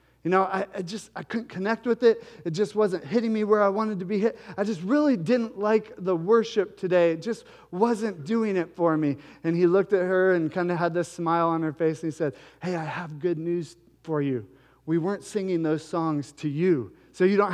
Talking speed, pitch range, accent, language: 240 wpm, 150-210 Hz, American, English